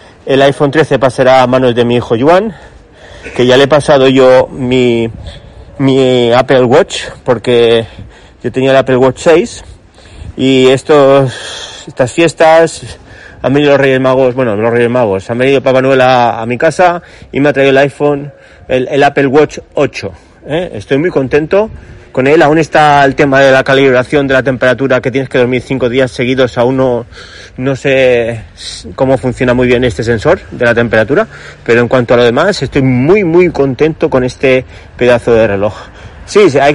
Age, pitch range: 30-49, 120-145 Hz